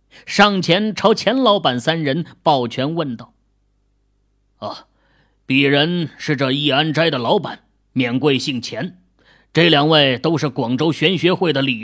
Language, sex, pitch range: Chinese, male, 110-185 Hz